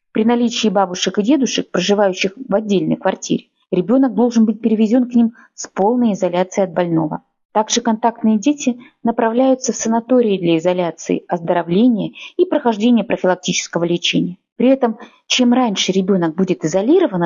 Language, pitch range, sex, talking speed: Russian, 190-240 Hz, female, 140 wpm